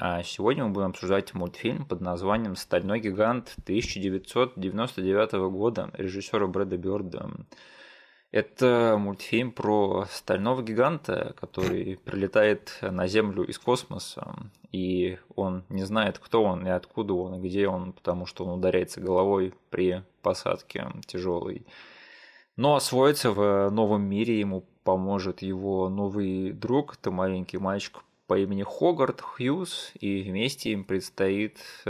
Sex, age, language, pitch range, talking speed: male, 20-39, Russian, 95-110 Hz, 125 wpm